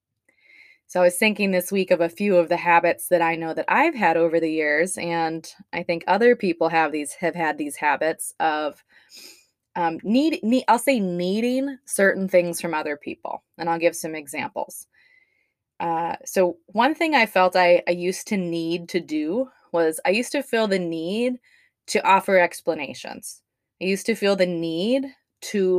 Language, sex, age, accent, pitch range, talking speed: English, female, 20-39, American, 170-210 Hz, 185 wpm